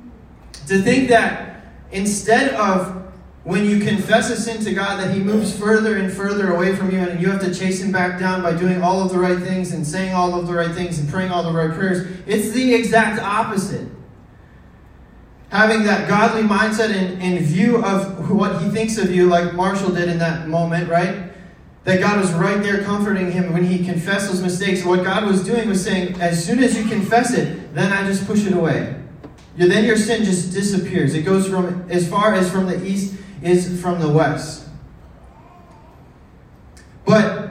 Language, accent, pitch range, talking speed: English, American, 175-210 Hz, 195 wpm